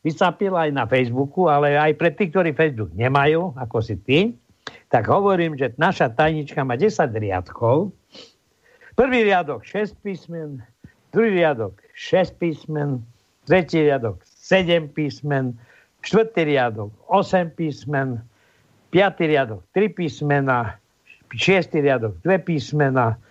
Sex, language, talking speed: male, Slovak, 120 wpm